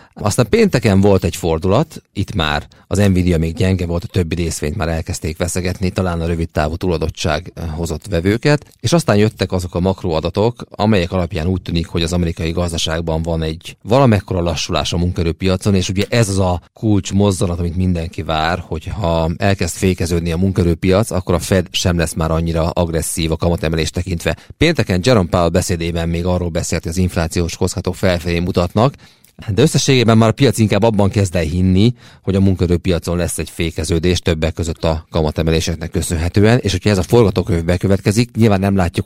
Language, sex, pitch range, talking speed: Hungarian, male, 85-100 Hz, 170 wpm